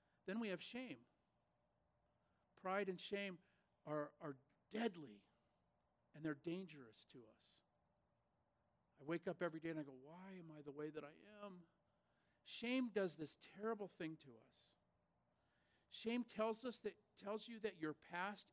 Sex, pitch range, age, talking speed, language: male, 130-180 Hz, 50-69, 150 wpm, English